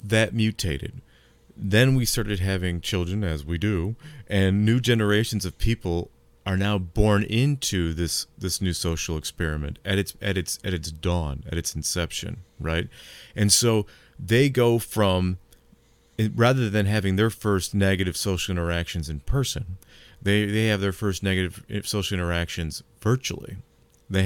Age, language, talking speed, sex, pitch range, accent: 40-59, English, 150 wpm, male, 85-110 Hz, American